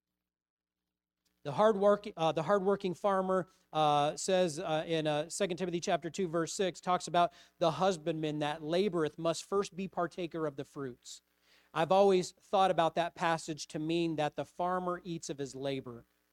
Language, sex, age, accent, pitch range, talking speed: English, male, 40-59, American, 150-190 Hz, 160 wpm